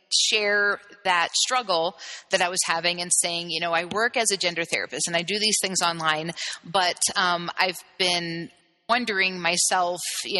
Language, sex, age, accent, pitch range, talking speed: English, female, 30-49, American, 175-205 Hz, 175 wpm